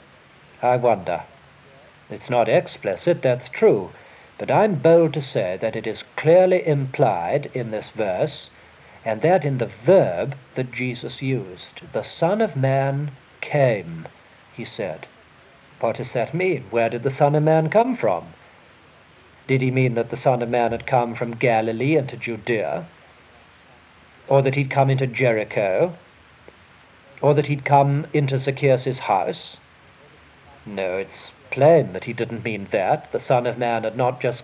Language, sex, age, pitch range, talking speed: English, male, 60-79, 115-145 Hz, 155 wpm